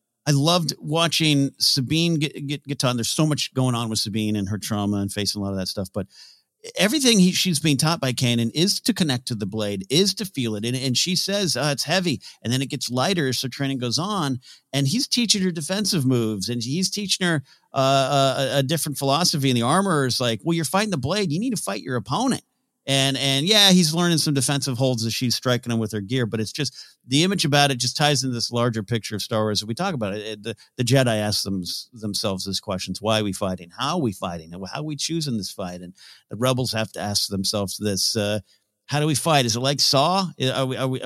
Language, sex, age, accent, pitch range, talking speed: English, male, 50-69, American, 110-155 Hz, 250 wpm